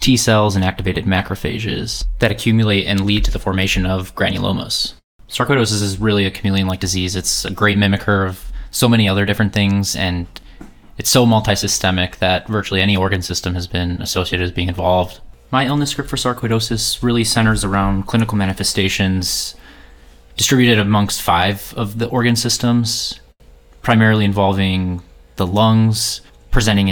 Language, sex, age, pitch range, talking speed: English, male, 20-39, 95-110 Hz, 150 wpm